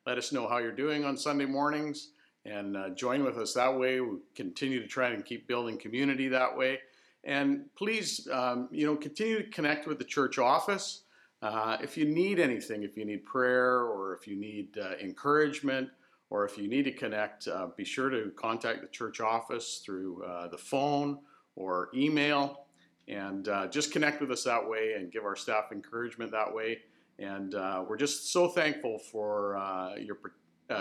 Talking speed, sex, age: 190 wpm, male, 50-69